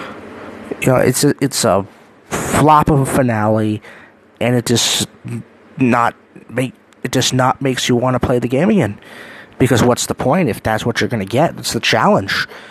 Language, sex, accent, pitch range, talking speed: English, male, American, 115-140 Hz, 195 wpm